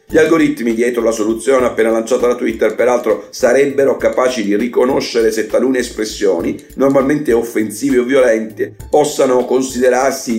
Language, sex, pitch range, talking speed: Italian, male, 120-170 Hz, 135 wpm